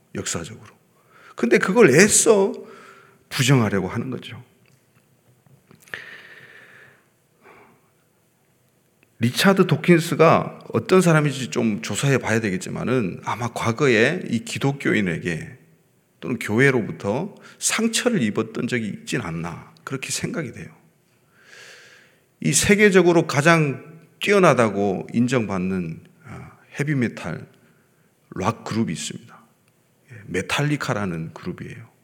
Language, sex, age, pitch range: Korean, male, 40-59, 115-165 Hz